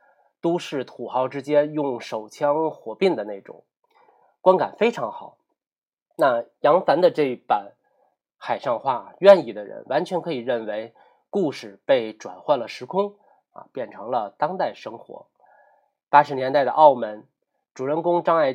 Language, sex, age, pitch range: Chinese, male, 20-39, 120-185 Hz